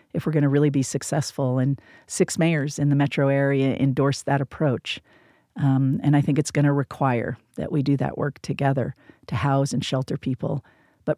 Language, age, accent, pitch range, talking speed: English, 50-69, American, 140-165 Hz, 200 wpm